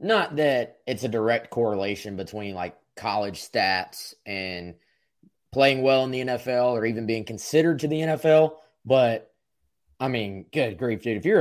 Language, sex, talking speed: English, male, 165 wpm